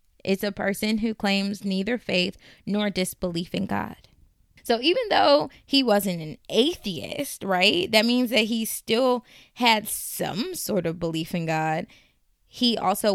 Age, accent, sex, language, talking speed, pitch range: 20-39, American, female, English, 150 wpm, 175-210 Hz